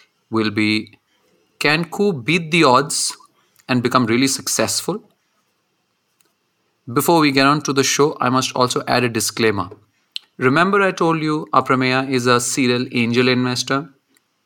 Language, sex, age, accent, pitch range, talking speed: English, male, 30-49, Indian, 110-140 Hz, 140 wpm